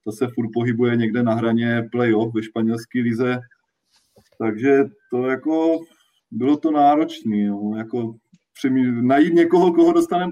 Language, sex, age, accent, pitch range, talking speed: Czech, male, 20-39, native, 115-135 Hz, 135 wpm